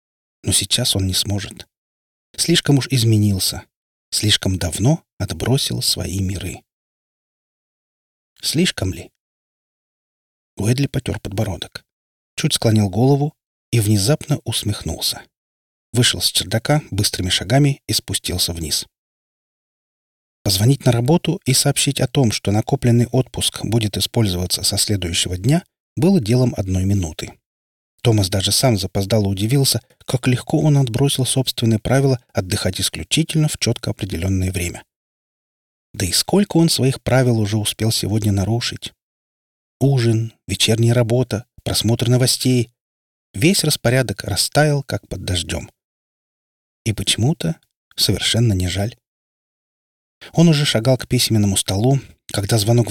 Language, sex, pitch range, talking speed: Russian, male, 95-130 Hz, 115 wpm